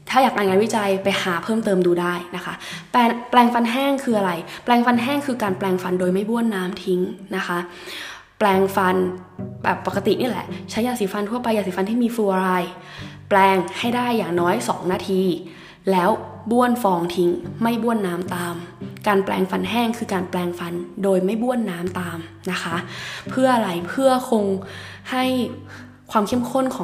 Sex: female